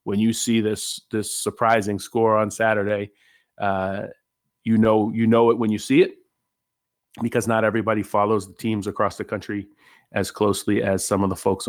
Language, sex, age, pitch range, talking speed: English, male, 30-49, 100-120 Hz, 180 wpm